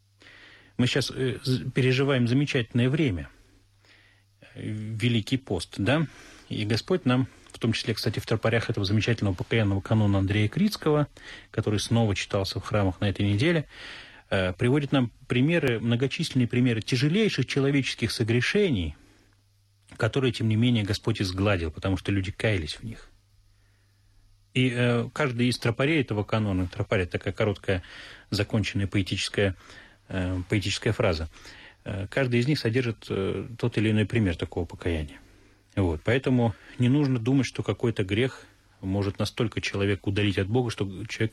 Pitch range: 100-125 Hz